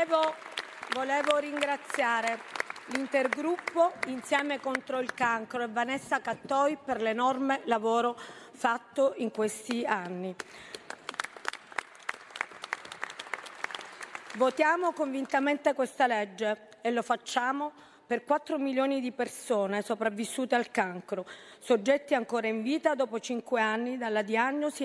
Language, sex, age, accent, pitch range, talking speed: Italian, female, 40-59, native, 225-280 Hz, 100 wpm